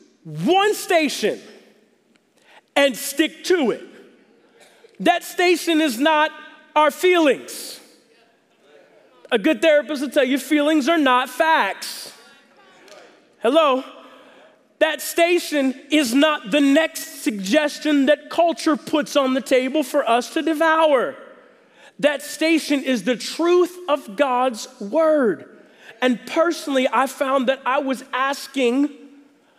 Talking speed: 115 wpm